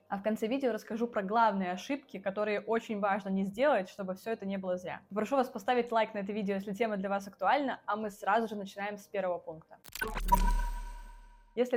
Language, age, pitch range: Russian, 20-39, 190-235 Hz